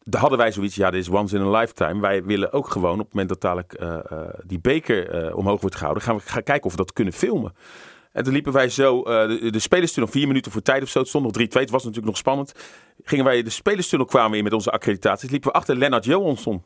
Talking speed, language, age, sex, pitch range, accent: 270 wpm, Dutch, 40-59, male, 105-135 Hz, Dutch